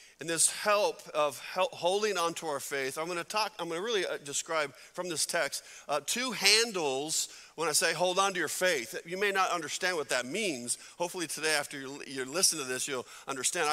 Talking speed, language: 205 wpm, English